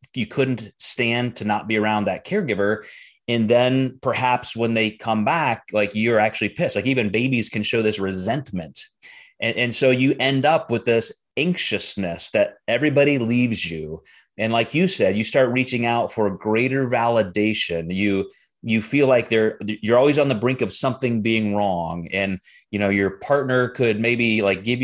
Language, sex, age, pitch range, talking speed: English, male, 30-49, 105-135 Hz, 180 wpm